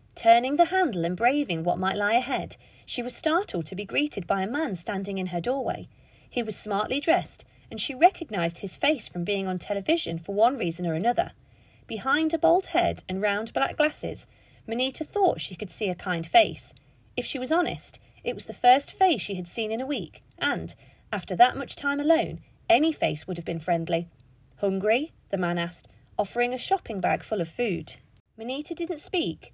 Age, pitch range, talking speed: 40-59, 175-280 Hz, 195 wpm